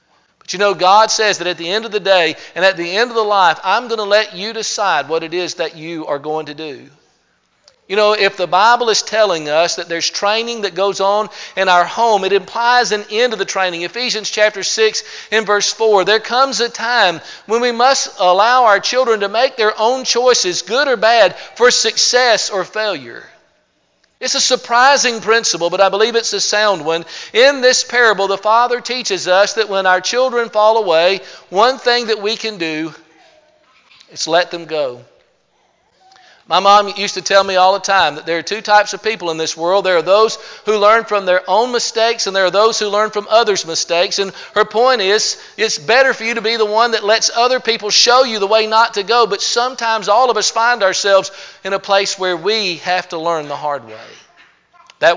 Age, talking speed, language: 50-69, 215 wpm, English